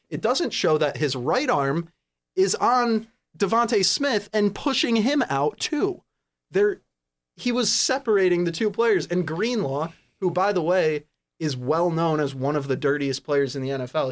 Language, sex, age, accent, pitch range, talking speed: English, male, 30-49, American, 130-180 Hz, 175 wpm